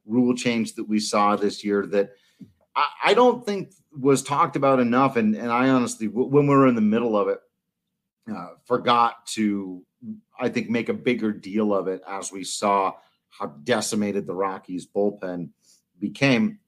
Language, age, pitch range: English, 40-59, 100-160 Hz